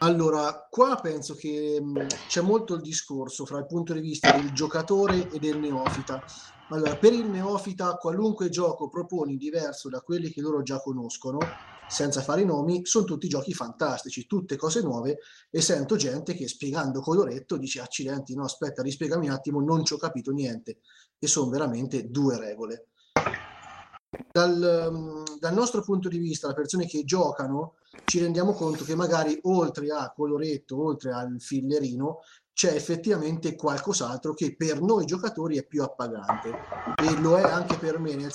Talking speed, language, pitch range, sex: 165 wpm, Italian, 140-175 Hz, male